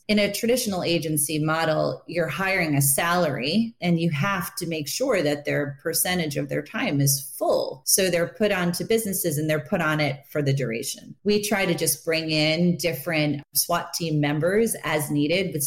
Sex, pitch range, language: female, 155-205 Hz, English